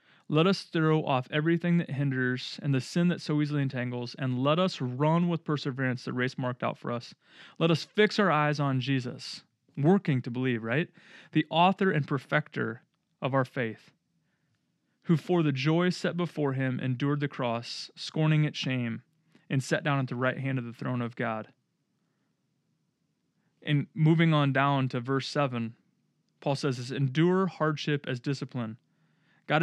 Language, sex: English, male